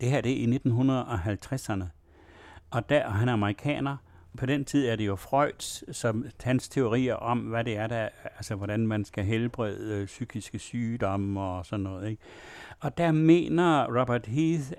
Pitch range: 110-140 Hz